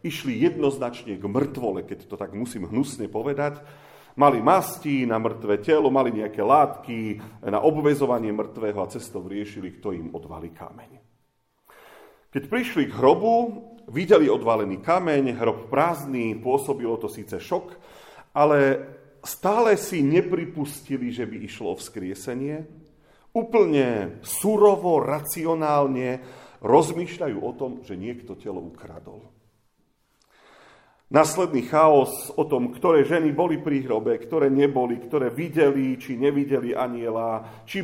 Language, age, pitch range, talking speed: Slovak, 40-59, 115-155 Hz, 120 wpm